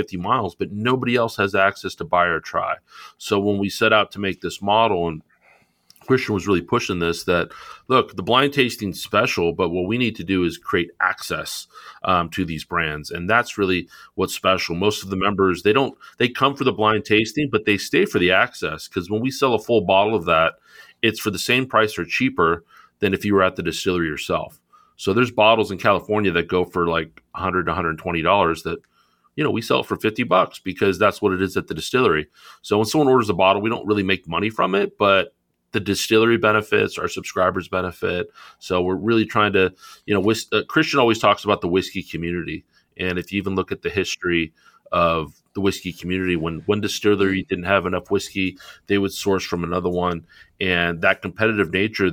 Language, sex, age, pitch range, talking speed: English, male, 40-59, 90-105 Hz, 215 wpm